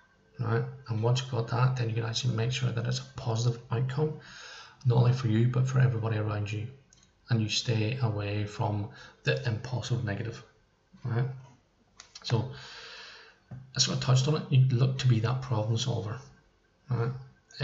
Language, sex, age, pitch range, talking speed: English, male, 20-39, 110-130 Hz, 175 wpm